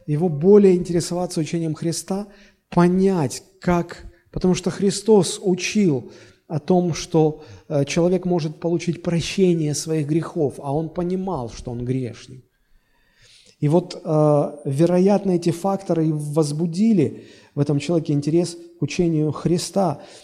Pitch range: 150-190 Hz